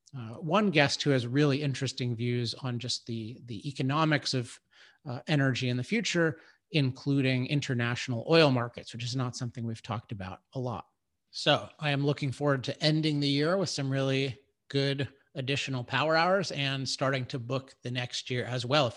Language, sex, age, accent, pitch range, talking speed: English, male, 30-49, American, 125-145 Hz, 185 wpm